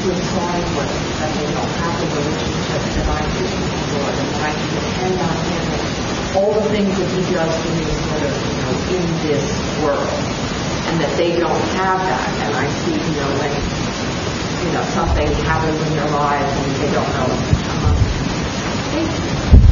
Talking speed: 145 wpm